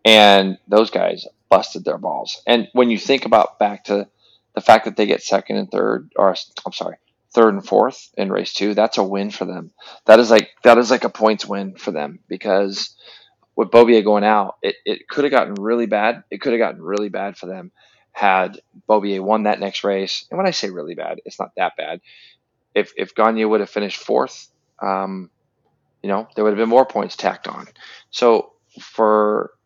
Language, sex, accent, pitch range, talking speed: English, male, American, 100-115 Hz, 205 wpm